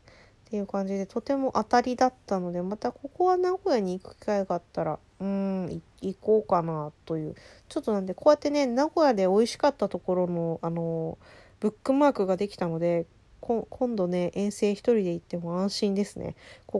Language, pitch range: Japanese, 180-240 Hz